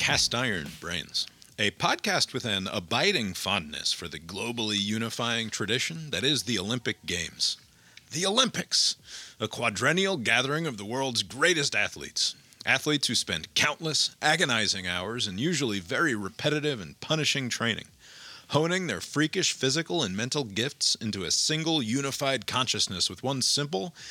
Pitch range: 105-150 Hz